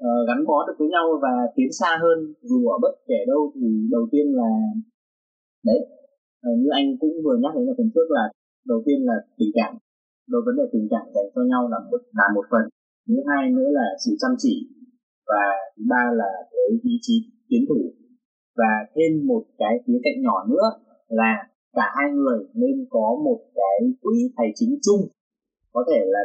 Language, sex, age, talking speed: Vietnamese, male, 20-39, 195 wpm